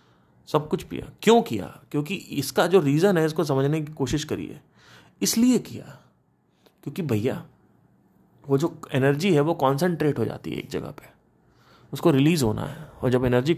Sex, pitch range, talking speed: male, 125-170 Hz, 170 wpm